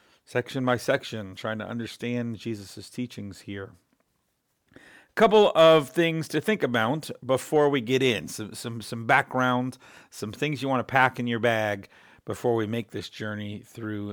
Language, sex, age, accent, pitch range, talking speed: English, male, 50-69, American, 110-140 Hz, 165 wpm